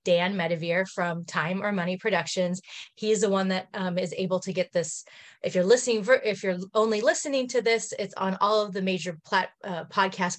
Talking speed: 200 wpm